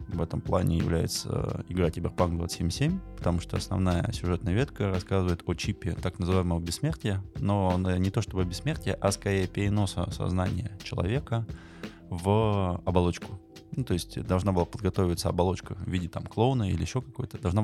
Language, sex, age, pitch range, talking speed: Russian, male, 20-39, 90-110 Hz, 150 wpm